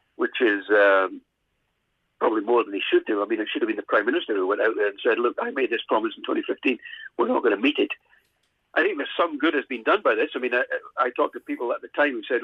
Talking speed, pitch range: 285 wpm, 295-415 Hz